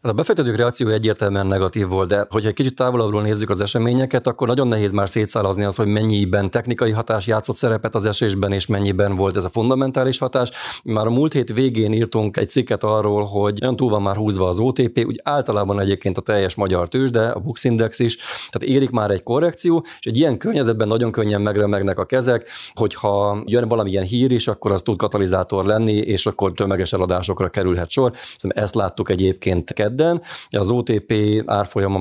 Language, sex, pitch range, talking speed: Hungarian, male, 100-120 Hz, 190 wpm